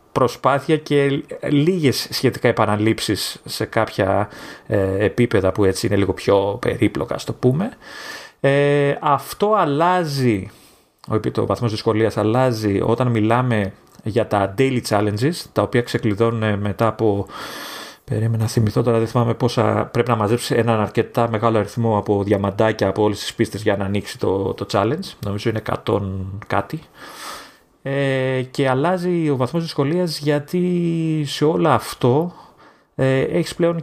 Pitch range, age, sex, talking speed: 105-145 Hz, 30-49, male, 135 wpm